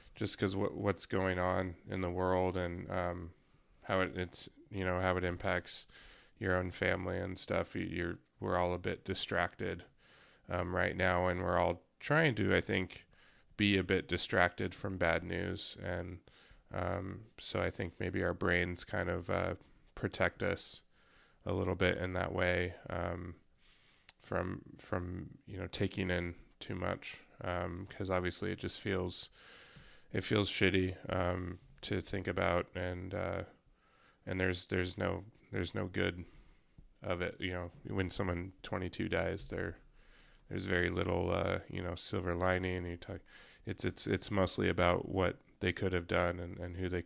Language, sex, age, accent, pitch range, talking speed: English, male, 20-39, American, 90-95 Hz, 165 wpm